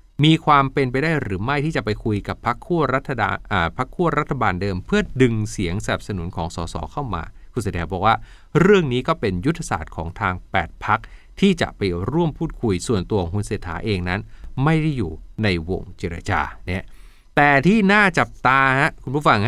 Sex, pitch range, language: male, 95-145 Hz, Thai